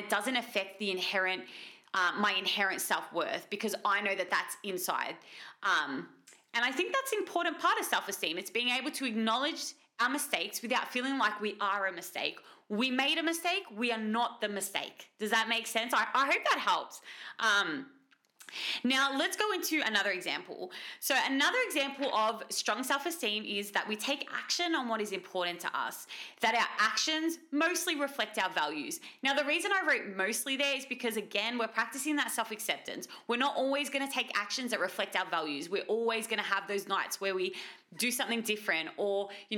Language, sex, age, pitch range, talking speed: English, female, 20-39, 205-280 Hz, 195 wpm